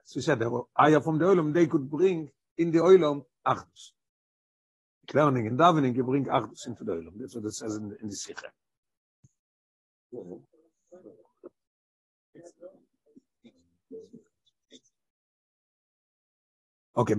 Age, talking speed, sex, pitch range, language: 60-79, 85 wpm, male, 125-160 Hz, English